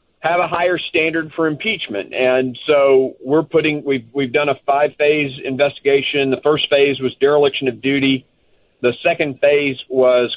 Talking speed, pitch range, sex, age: 155 wpm, 135-155 Hz, male, 40-59